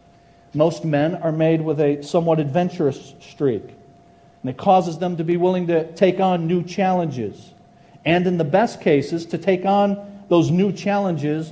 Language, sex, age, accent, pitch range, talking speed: English, male, 40-59, American, 130-170 Hz, 165 wpm